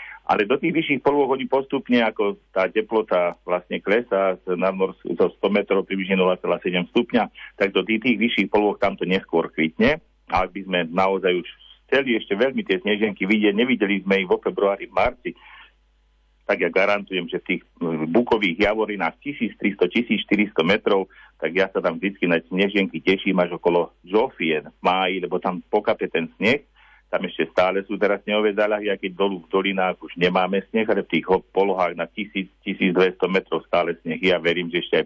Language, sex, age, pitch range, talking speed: Slovak, male, 50-69, 95-125 Hz, 175 wpm